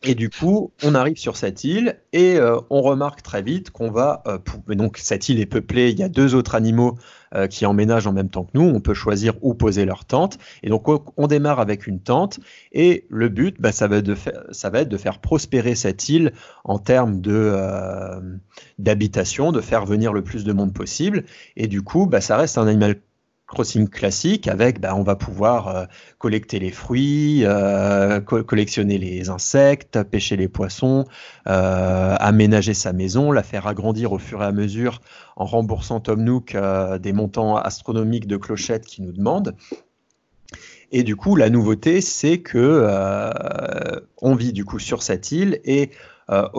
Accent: French